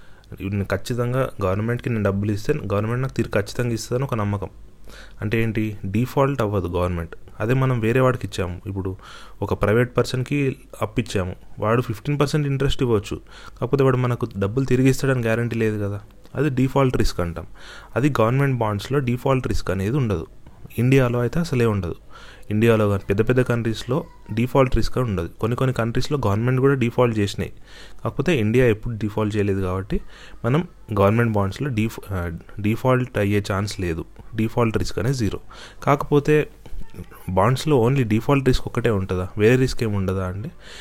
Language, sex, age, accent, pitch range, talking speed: Telugu, male, 30-49, native, 100-125 Hz, 155 wpm